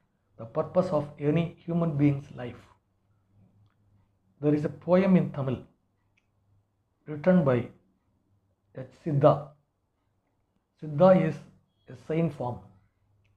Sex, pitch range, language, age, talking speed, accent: male, 100-165 Hz, English, 60-79, 100 wpm, Indian